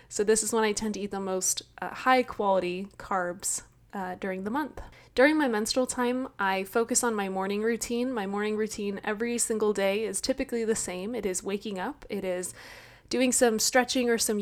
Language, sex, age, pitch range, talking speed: English, female, 20-39, 190-230 Hz, 205 wpm